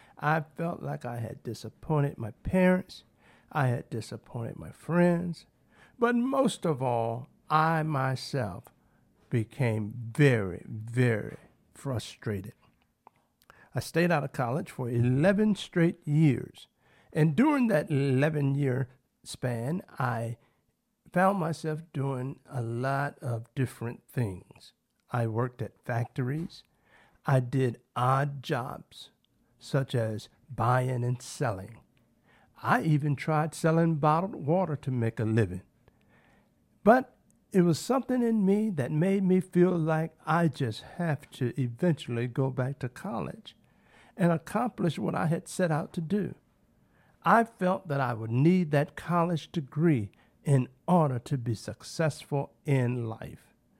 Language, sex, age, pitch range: English, male, 50-69, 120-165 Hz